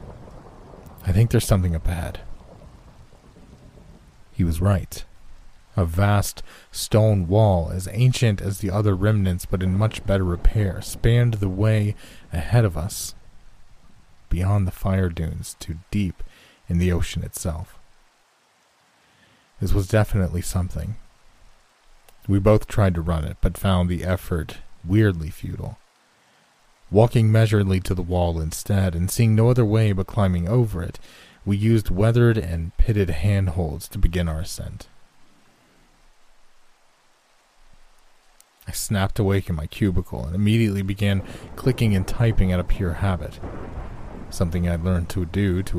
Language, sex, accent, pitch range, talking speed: English, male, American, 85-105 Hz, 135 wpm